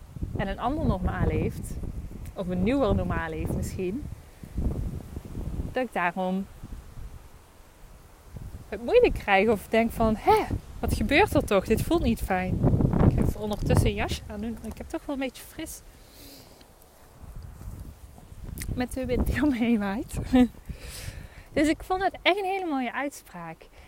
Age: 20-39